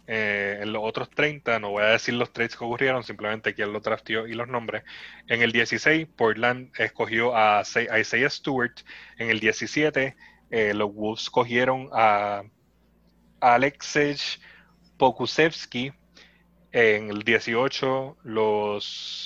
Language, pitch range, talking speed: Spanish, 105-125 Hz, 130 wpm